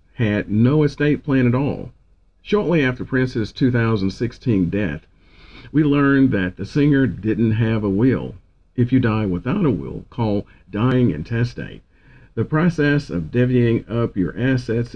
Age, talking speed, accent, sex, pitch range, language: 50-69, 145 wpm, American, male, 95-135 Hz, English